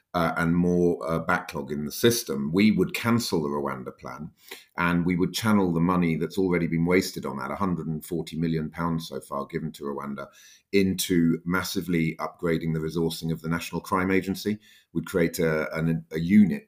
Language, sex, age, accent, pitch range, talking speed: English, male, 30-49, British, 80-95 Hz, 175 wpm